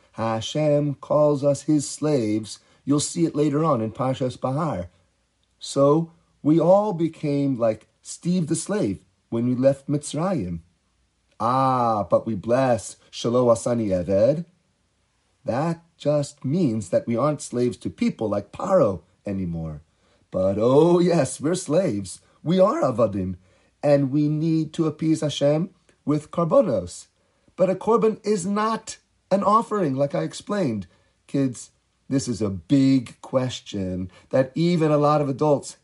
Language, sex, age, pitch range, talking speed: English, male, 30-49, 110-175 Hz, 135 wpm